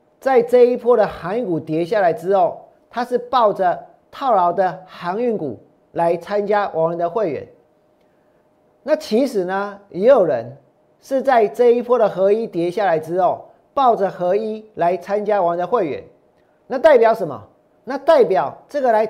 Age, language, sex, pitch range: 40-59, Chinese, male, 180-245 Hz